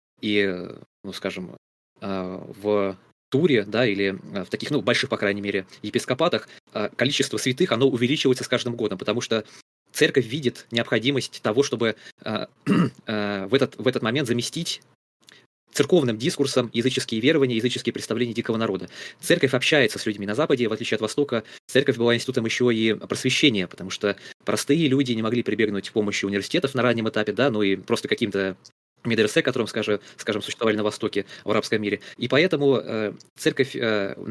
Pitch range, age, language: 105-130 Hz, 20-39, Russian